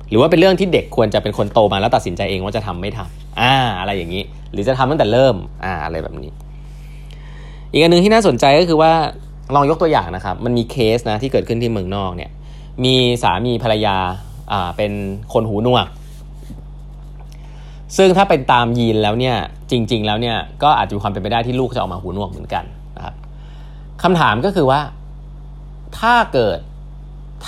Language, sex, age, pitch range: Thai, male, 20-39, 110-150 Hz